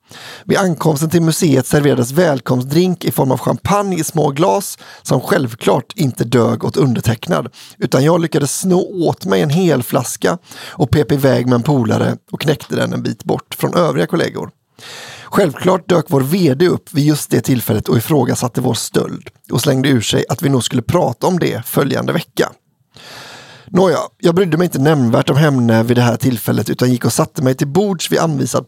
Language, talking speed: English, 190 wpm